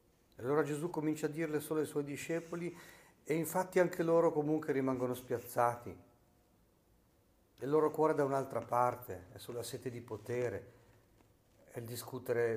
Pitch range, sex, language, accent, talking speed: 110-140 Hz, male, Italian, native, 150 wpm